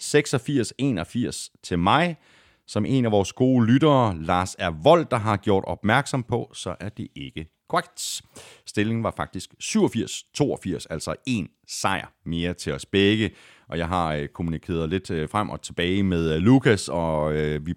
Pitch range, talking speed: 85-130 Hz, 150 wpm